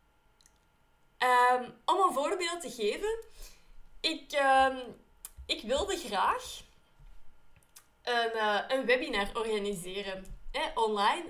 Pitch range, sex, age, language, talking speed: 230-375 Hz, female, 20-39, Dutch, 80 wpm